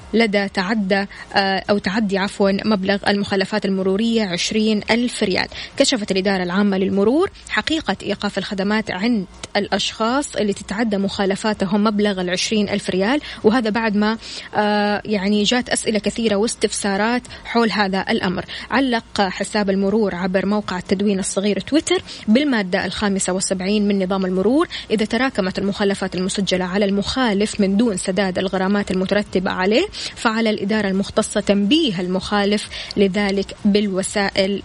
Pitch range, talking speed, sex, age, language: 195-225 Hz, 125 wpm, female, 20-39, Arabic